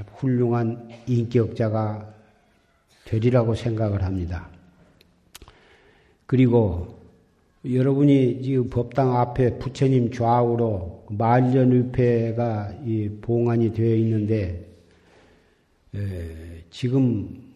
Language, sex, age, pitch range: Korean, male, 50-69, 110-135 Hz